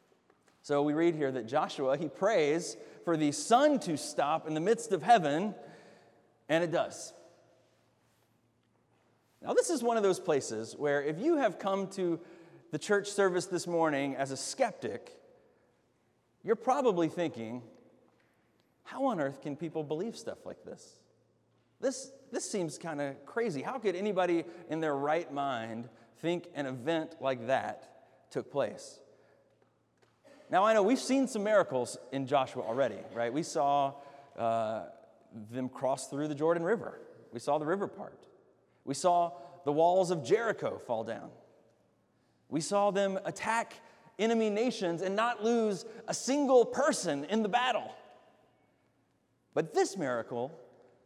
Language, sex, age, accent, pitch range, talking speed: English, male, 30-49, American, 140-225 Hz, 145 wpm